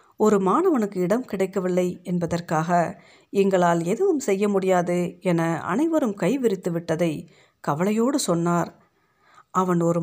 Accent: native